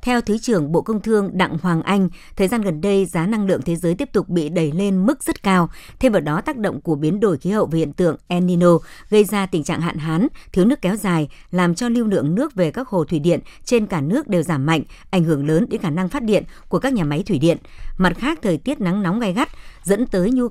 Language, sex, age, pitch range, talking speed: Vietnamese, male, 60-79, 165-210 Hz, 270 wpm